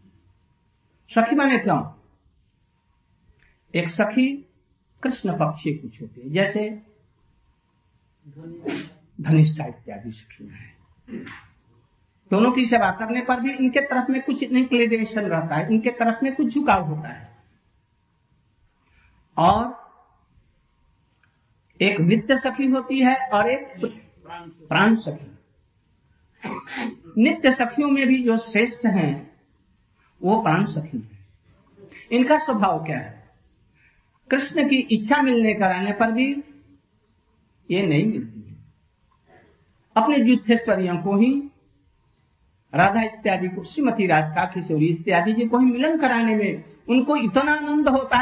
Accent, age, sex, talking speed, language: native, 50-69, male, 105 wpm, Hindi